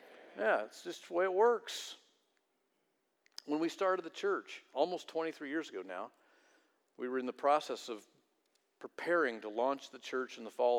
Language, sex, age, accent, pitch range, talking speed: English, male, 50-69, American, 120-165 Hz, 170 wpm